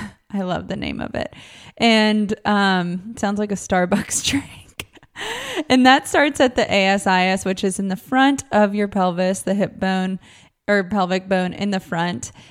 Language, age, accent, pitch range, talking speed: English, 20-39, American, 190-235 Hz, 175 wpm